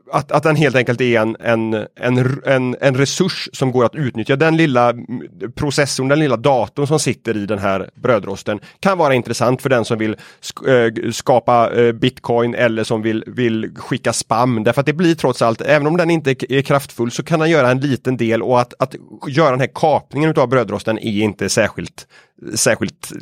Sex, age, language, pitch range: male, 30-49, Swedish, 115-150 Hz